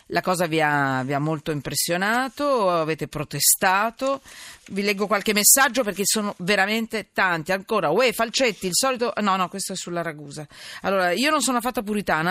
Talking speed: 170 wpm